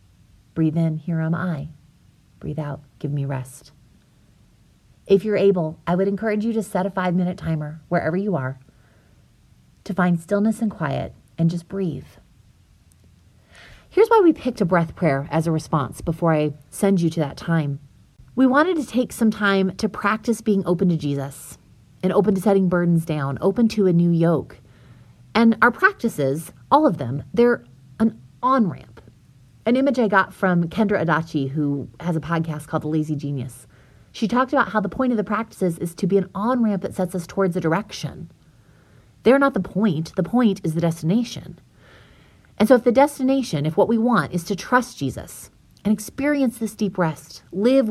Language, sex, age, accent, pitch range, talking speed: English, female, 30-49, American, 150-215 Hz, 180 wpm